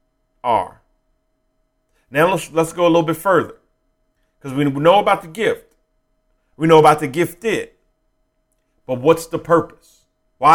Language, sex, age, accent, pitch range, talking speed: English, male, 40-59, American, 130-165 Hz, 140 wpm